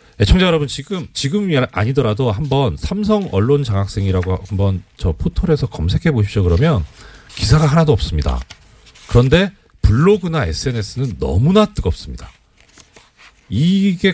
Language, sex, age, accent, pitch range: Korean, male, 40-59, native, 85-140 Hz